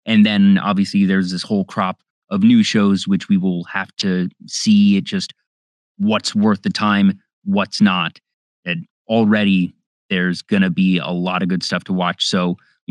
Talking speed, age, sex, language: 180 wpm, 30-49, male, English